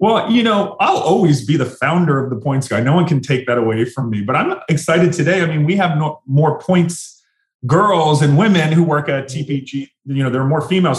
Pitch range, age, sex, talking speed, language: 120-155 Hz, 30-49, male, 240 wpm, English